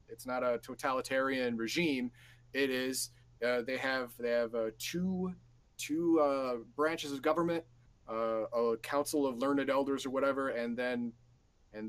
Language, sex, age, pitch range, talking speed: English, male, 30-49, 115-140 Hz, 150 wpm